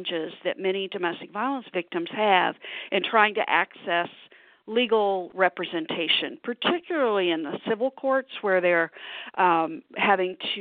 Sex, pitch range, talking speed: female, 190-265 Hz, 125 wpm